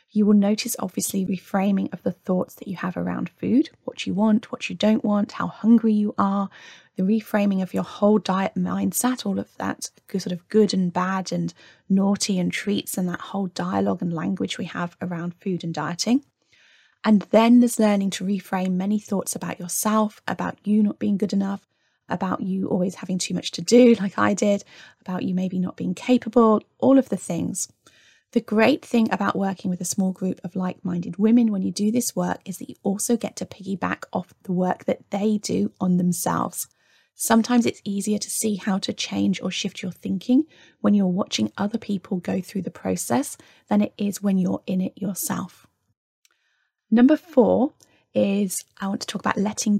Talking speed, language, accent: 195 wpm, English, British